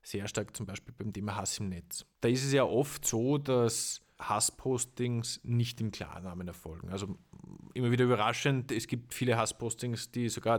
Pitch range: 105-125 Hz